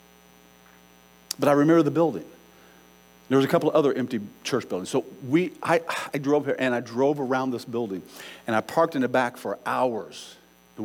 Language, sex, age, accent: English, male, 50-69, American